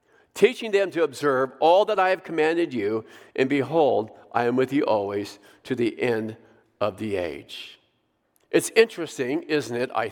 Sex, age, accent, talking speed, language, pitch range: male, 50-69, American, 165 wpm, English, 140-215 Hz